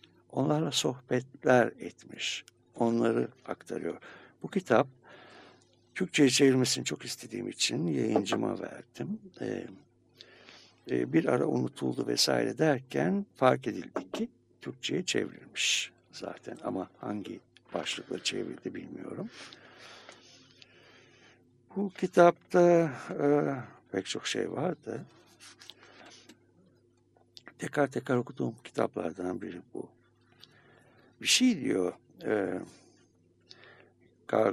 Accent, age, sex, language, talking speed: native, 60-79, male, Turkish, 85 wpm